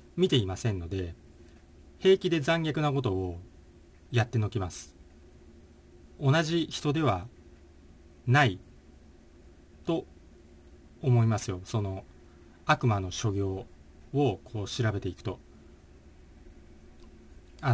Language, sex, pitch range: Japanese, male, 80-125 Hz